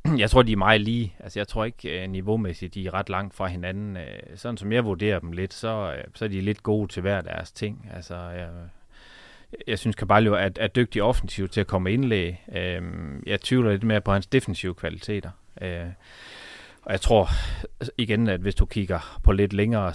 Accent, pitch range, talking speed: native, 90-105 Hz, 200 wpm